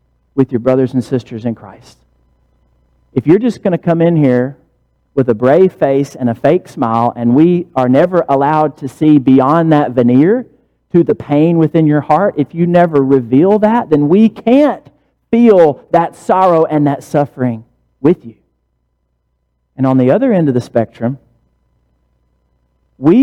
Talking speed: 165 wpm